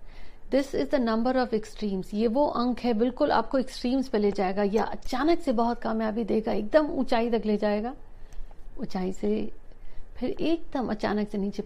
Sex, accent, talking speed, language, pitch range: female, native, 175 wpm, Hindi, 205-250 Hz